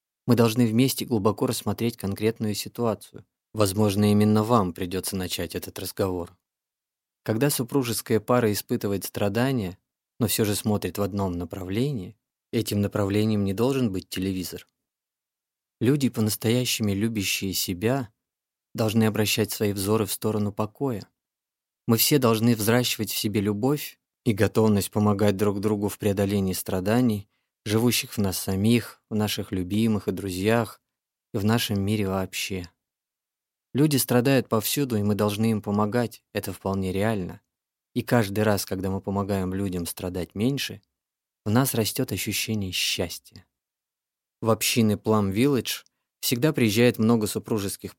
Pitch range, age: 100-115 Hz, 20-39